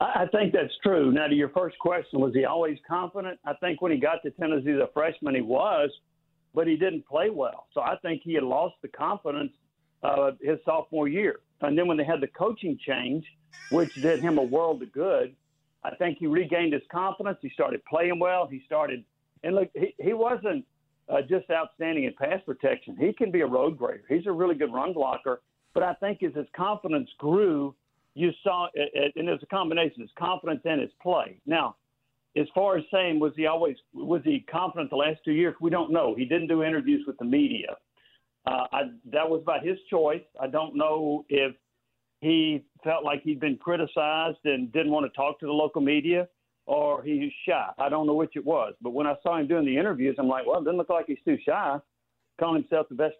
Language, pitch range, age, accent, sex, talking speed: English, 145-175 Hz, 50-69, American, male, 220 wpm